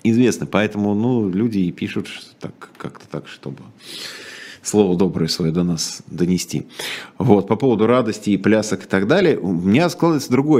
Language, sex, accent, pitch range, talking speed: Russian, male, native, 90-120 Hz, 165 wpm